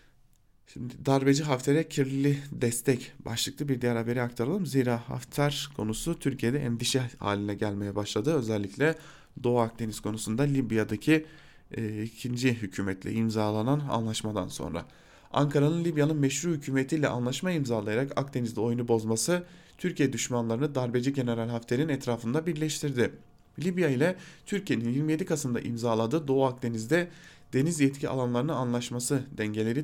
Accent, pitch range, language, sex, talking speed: Turkish, 115-155 Hz, German, male, 115 wpm